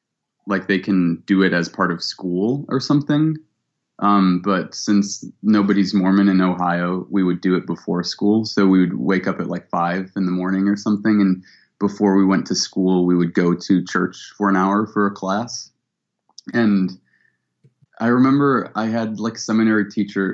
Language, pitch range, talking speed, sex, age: English, 90-105 Hz, 185 wpm, male, 20-39